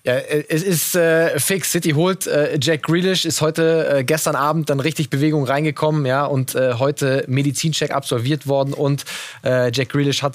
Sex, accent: male, German